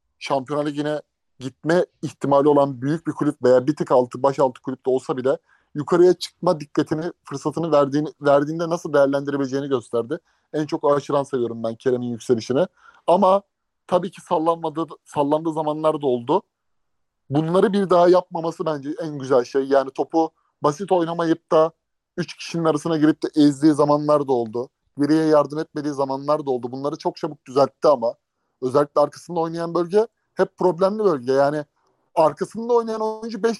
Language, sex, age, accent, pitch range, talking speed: Turkish, male, 30-49, native, 140-175 Hz, 150 wpm